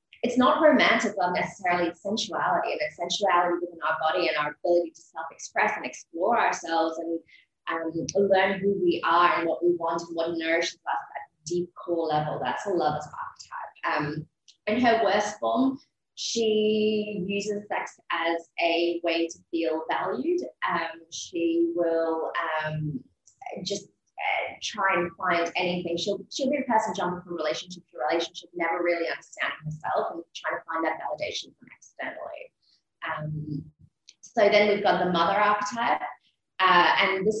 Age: 20-39